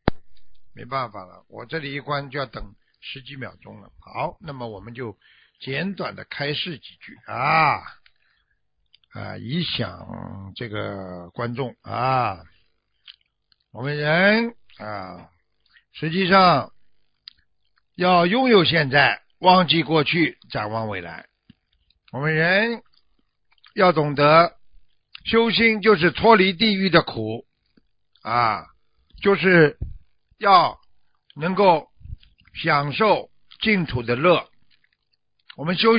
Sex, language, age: male, Chinese, 60-79